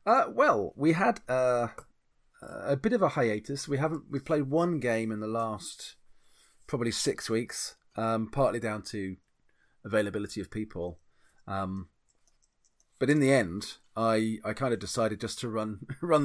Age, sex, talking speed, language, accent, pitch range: 30-49, male, 160 wpm, English, British, 105-135 Hz